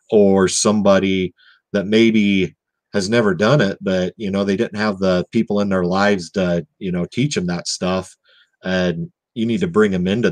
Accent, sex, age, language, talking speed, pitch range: American, male, 40-59, English, 190 wpm, 90-105 Hz